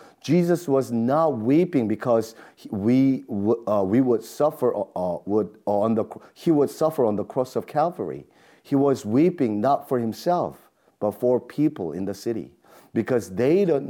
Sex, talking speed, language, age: male, 160 wpm, English, 40-59